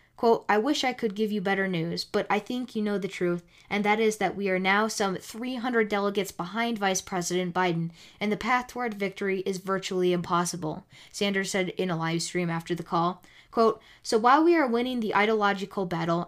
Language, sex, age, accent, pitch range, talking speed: English, female, 10-29, American, 185-225 Hz, 205 wpm